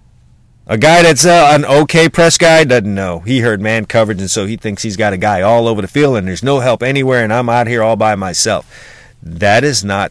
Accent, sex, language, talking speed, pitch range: American, male, English, 245 wpm, 110-135 Hz